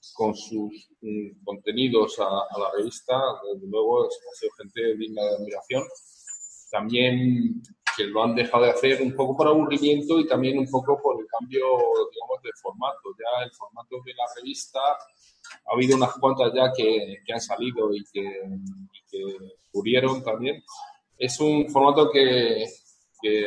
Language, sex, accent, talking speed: Spanish, male, Spanish, 160 wpm